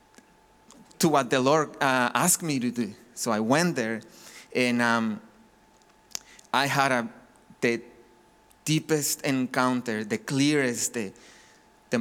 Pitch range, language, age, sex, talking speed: 120-135 Hz, English, 30-49, male, 120 wpm